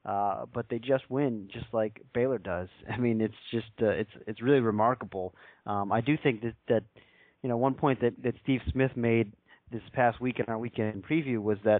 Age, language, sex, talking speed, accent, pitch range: 30-49, English, male, 215 wpm, American, 110-130 Hz